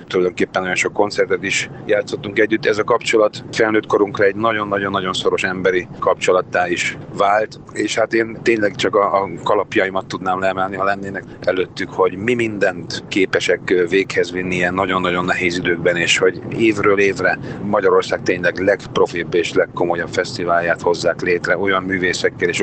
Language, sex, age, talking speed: Hungarian, male, 40-59, 155 wpm